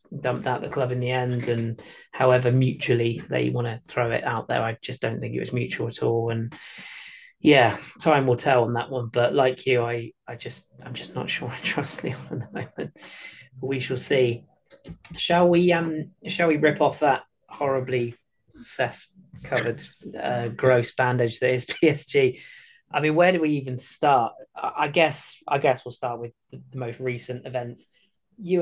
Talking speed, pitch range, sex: 190 wpm, 120-140 Hz, male